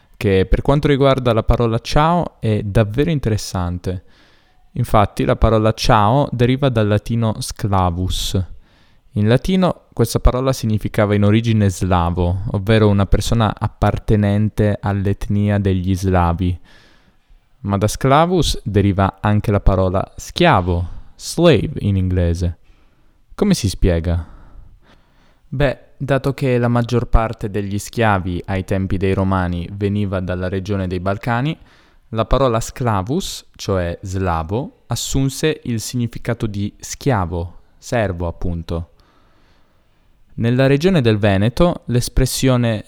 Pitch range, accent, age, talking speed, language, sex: 95-120 Hz, native, 10-29, 115 wpm, Italian, male